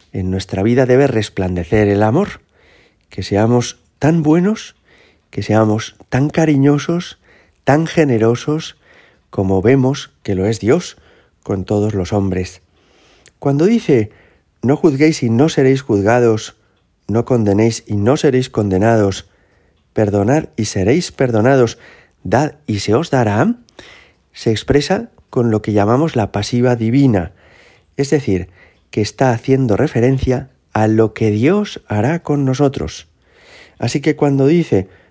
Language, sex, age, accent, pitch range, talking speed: Spanish, male, 40-59, Spanish, 100-135 Hz, 130 wpm